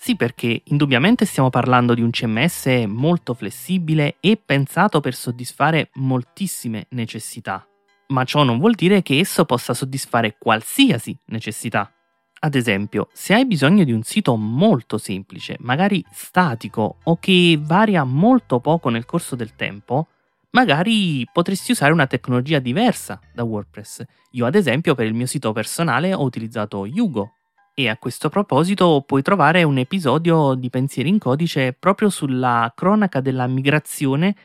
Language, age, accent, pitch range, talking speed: Italian, 30-49, native, 115-175 Hz, 145 wpm